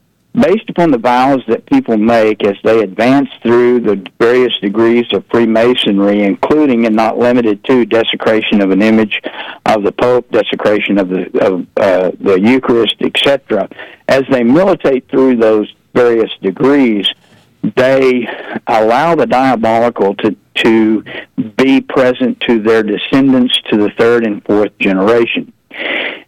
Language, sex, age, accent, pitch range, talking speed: English, male, 60-79, American, 105-125 Hz, 130 wpm